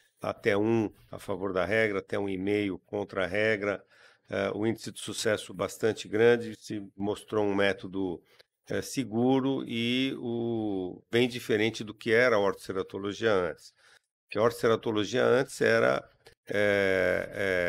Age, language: 50-69, Portuguese